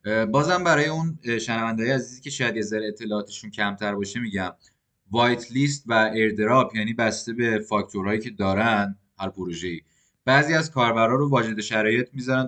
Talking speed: 155 wpm